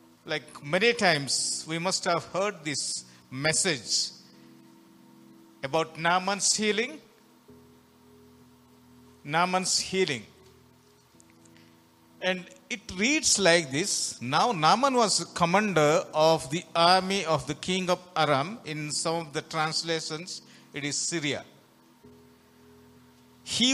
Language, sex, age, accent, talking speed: Telugu, male, 50-69, native, 100 wpm